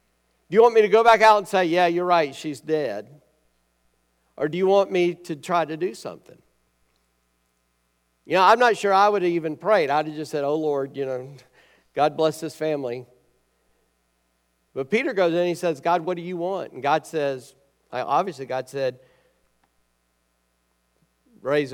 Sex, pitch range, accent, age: male, 120-180 Hz, American, 50-69